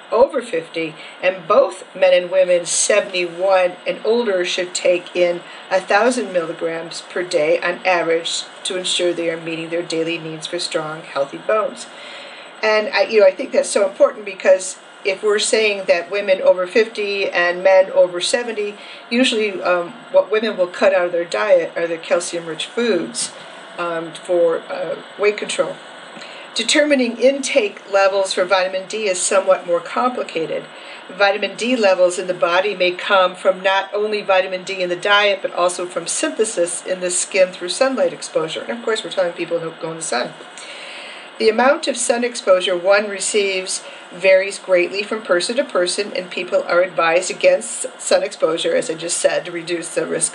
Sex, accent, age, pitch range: female, American, 40-59, 175-220 Hz